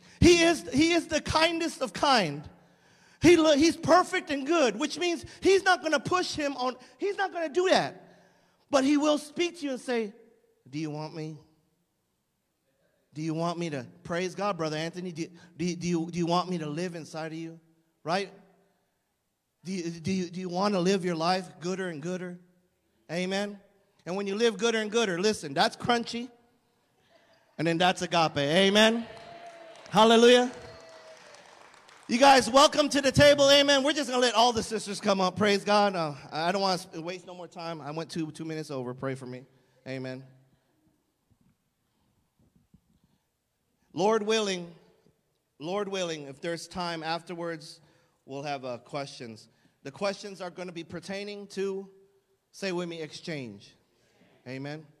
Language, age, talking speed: English, 40-59, 170 wpm